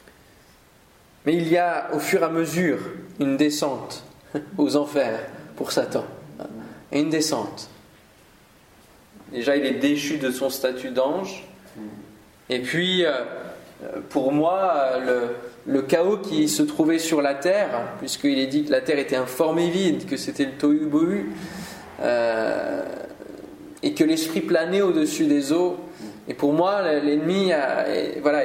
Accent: French